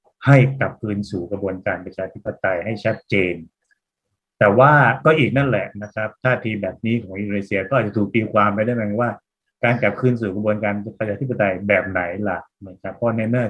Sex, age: male, 20-39